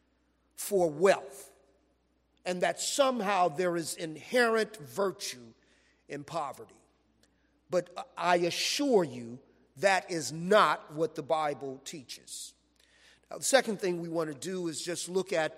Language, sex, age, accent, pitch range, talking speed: English, male, 40-59, American, 170-220 Hz, 130 wpm